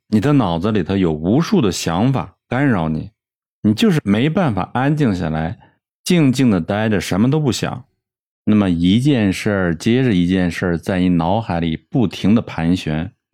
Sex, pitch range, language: male, 90-125 Hz, Chinese